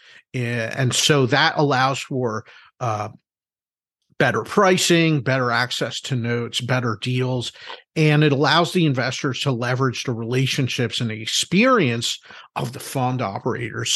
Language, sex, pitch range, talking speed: English, male, 125-165 Hz, 130 wpm